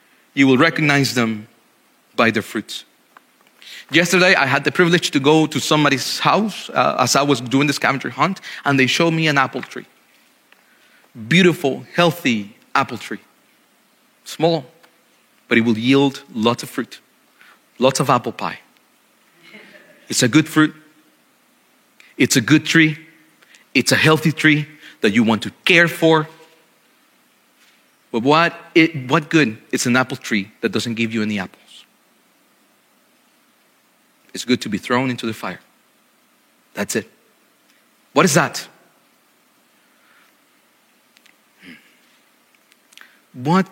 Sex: male